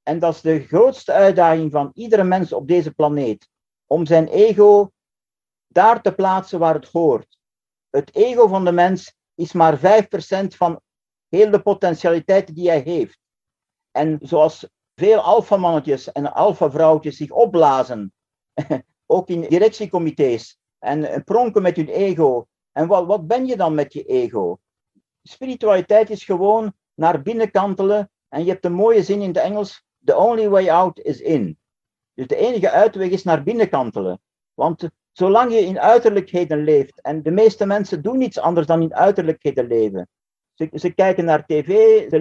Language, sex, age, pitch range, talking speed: Dutch, male, 50-69, 165-210 Hz, 160 wpm